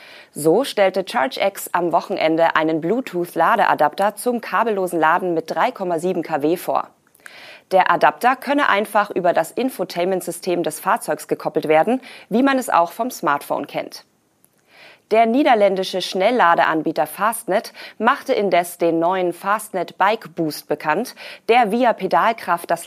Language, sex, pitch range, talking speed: German, female, 165-220 Hz, 125 wpm